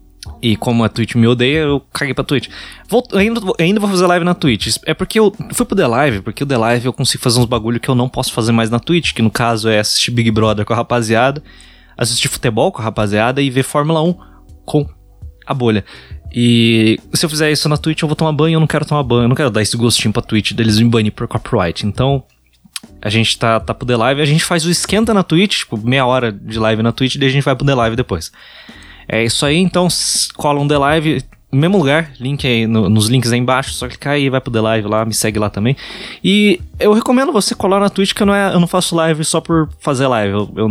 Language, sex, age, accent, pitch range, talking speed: Portuguese, male, 20-39, Brazilian, 110-150 Hz, 255 wpm